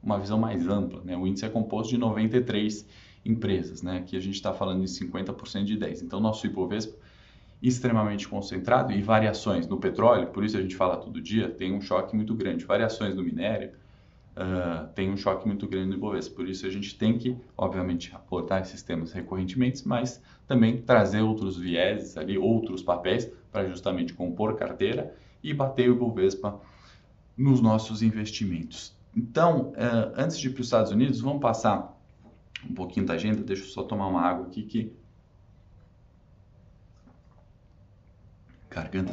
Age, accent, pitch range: 20-39, Brazilian, 95-115 Hz